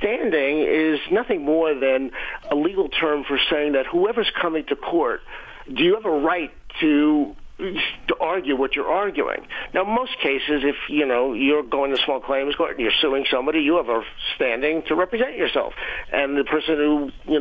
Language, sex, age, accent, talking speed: English, male, 50-69, American, 185 wpm